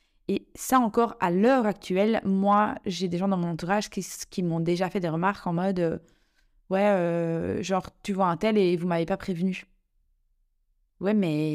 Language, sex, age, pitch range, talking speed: French, female, 20-39, 170-200 Hz, 190 wpm